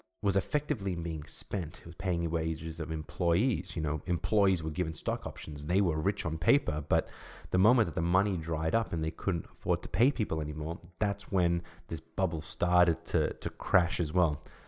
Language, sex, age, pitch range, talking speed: English, male, 30-49, 80-95 Hz, 195 wpm